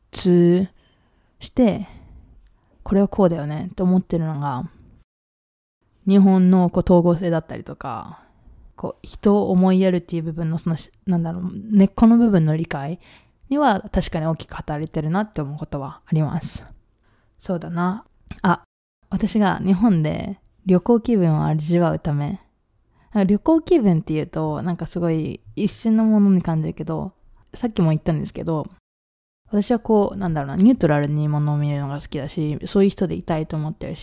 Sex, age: female, 20-39